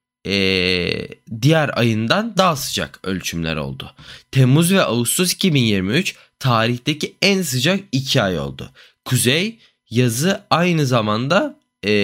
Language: Turkish